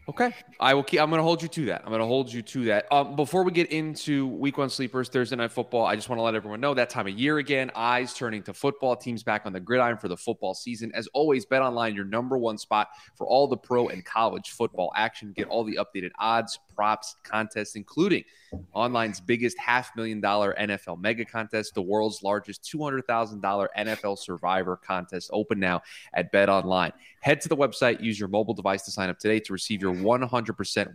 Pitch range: 105-125 Hz